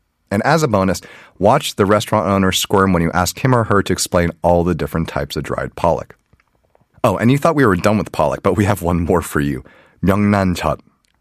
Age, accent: 30-49, American